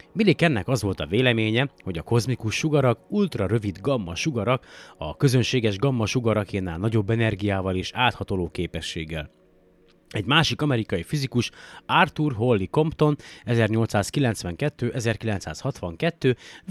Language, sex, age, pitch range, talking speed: Hungarian, male, 30-49, 100-140 Hz, 110 wpm